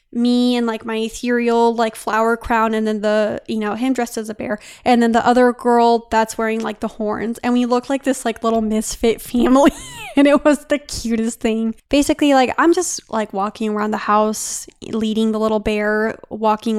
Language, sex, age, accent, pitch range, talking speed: English, female, 20-39, American, 220-245 Hz, 205 wpm